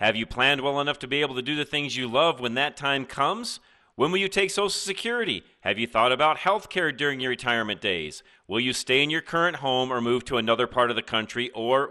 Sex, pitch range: male, 130-195 Hz